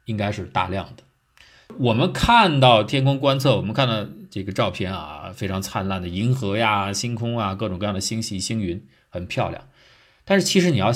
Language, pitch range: Chinese, 100-140 Hz